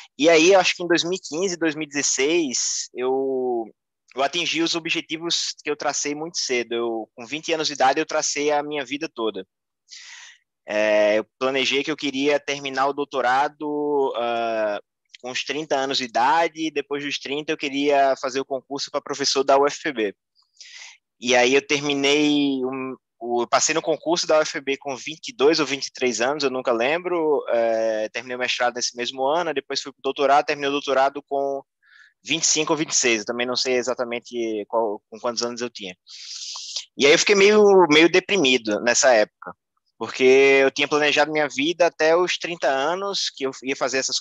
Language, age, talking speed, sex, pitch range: Portuguese, 20-39, 180 wpm, male, 125-160 Hz